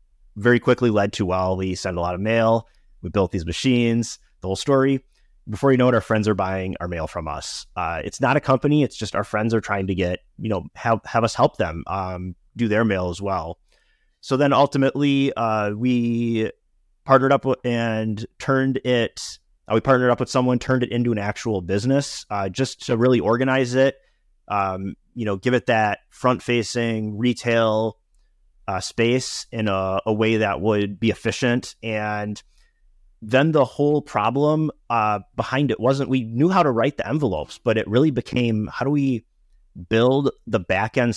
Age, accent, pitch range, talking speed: 30-49, American, 95-125 Hz, 190 wpm